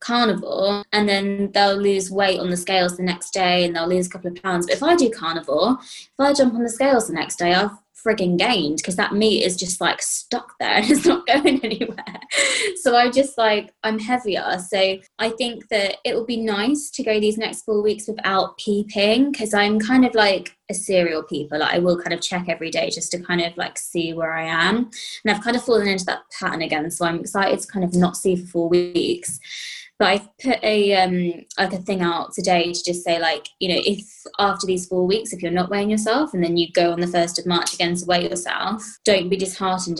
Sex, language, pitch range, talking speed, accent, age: female, English, 175-215 Hz, 235 wpm, British, 20-39